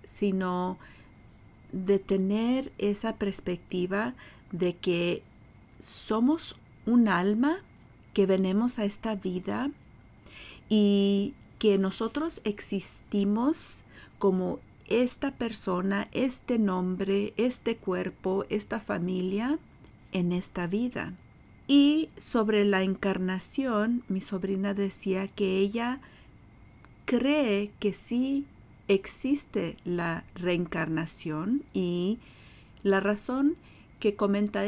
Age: 40-59